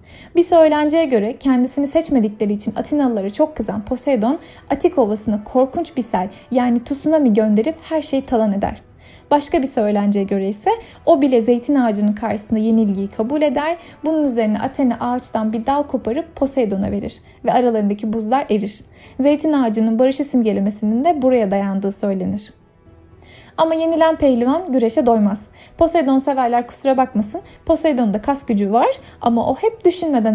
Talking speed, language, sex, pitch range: 145 wpm, Turkish, female, 220-300 Hz